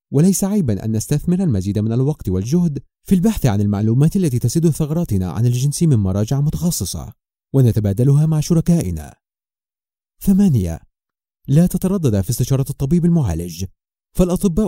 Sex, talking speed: male, 125 wpm